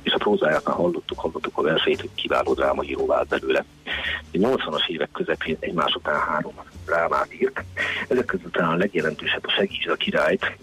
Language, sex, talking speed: Hungarian, male, 175 wpm